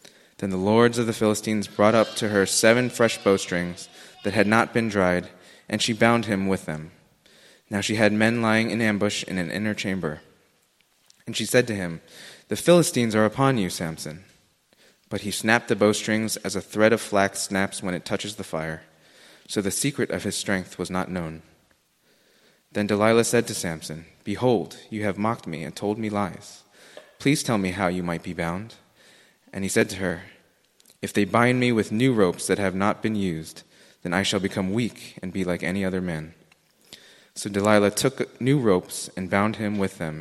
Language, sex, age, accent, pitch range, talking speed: English, male, 20-39, American, 95-110 Hz, 195 wpm